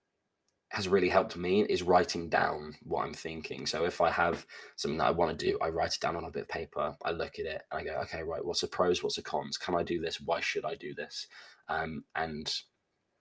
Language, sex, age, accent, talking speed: English, male, 20-39, British, 250 wpm